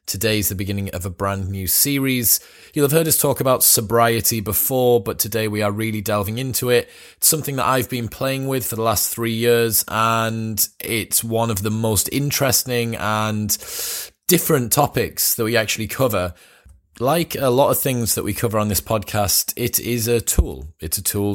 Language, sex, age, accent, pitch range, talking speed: English, male, 20-39, British, 100-120 Hz, 190 wpm